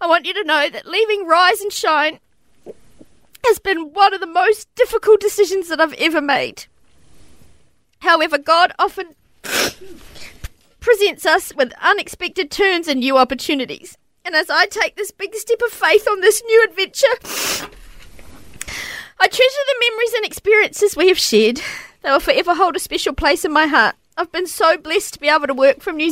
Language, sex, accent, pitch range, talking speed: English, female, Australian, 275-380 Hz, 175 wpm